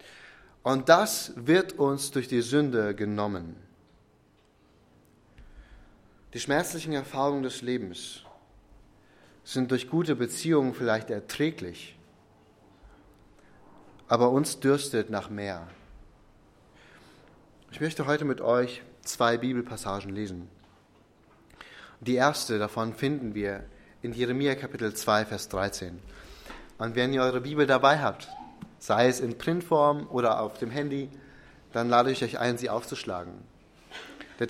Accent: German